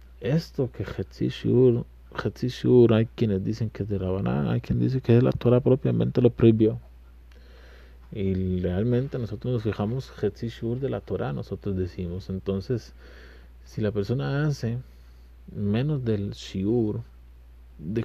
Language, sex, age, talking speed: Spanish, male, 30-49, 135 wpm